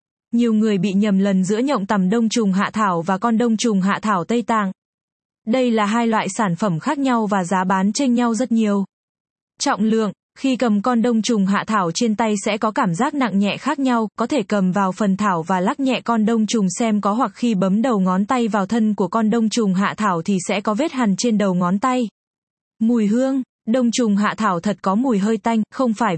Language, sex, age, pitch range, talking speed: Vietnamese, female, 20-39, 200-240 Hz, 240 wpm